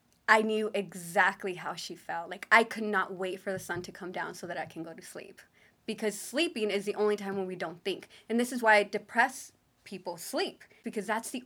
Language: English